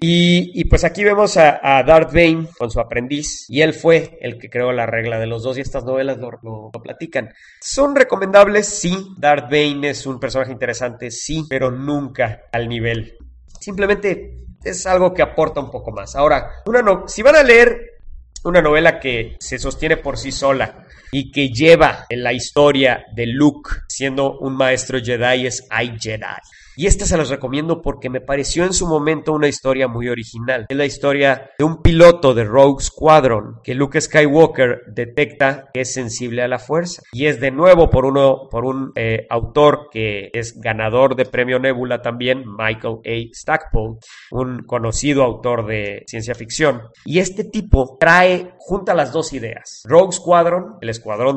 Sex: male